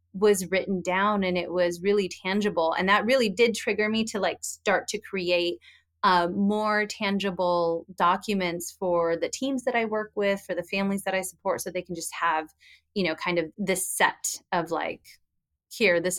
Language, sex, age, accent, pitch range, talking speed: English, female, 30-49, American, 180-215 Hz, 190 wpm